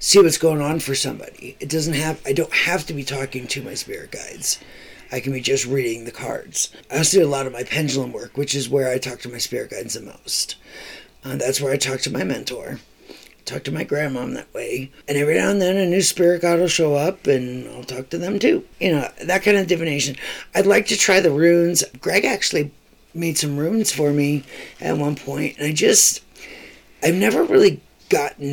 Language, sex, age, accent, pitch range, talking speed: English, male, 40-59, American, 135-175 Hz, 225 wpm